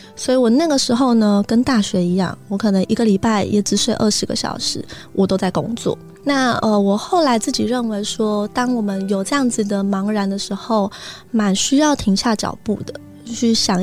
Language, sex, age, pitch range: Chinese, female, 20-39, 200-240 Hz